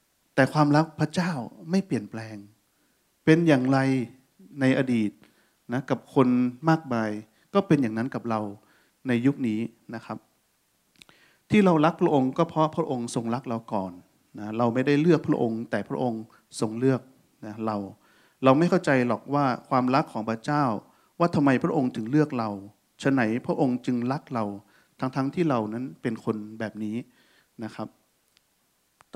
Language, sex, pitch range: Thai, male, 110-145 Hz